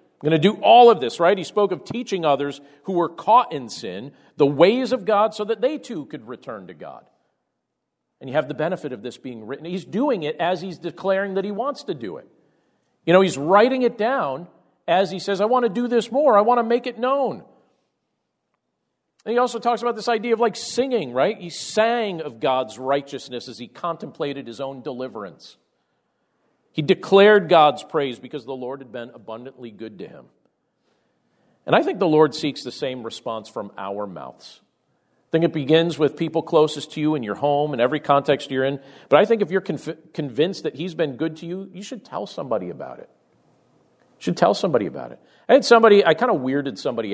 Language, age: English, 40-59